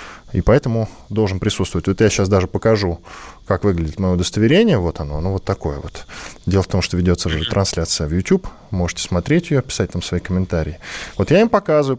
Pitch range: 95-150 Hz